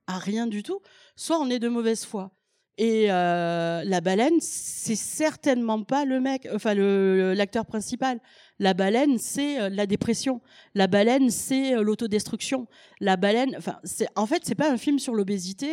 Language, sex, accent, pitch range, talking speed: French, female, French, 195-255 Hz, 170 wpm